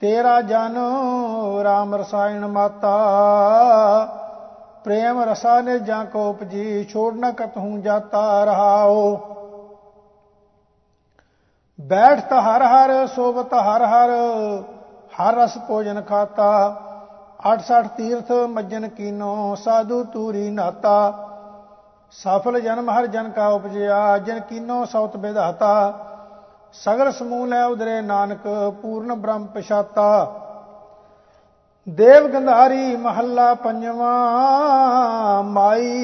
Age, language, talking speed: 50-69, English, 50 wpm